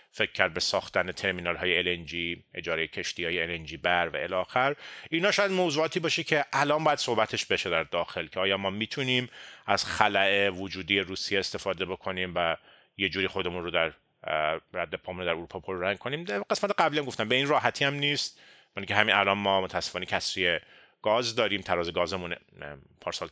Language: Persian